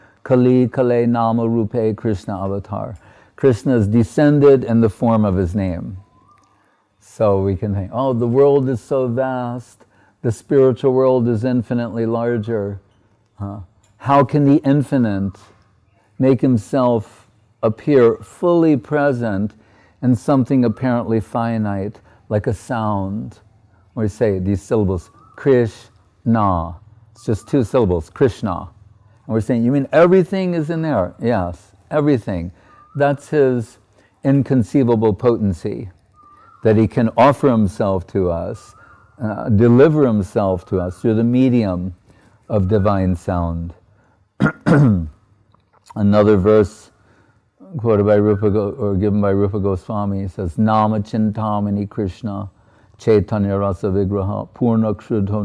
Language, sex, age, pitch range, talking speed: English, male, 50-69, 100-120 Hz, 115 wpm